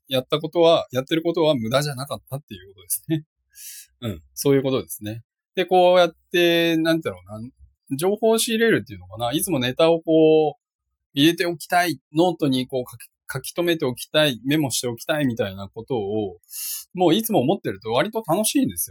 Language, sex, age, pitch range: Japanese, male, 20-39, 105-160 Hz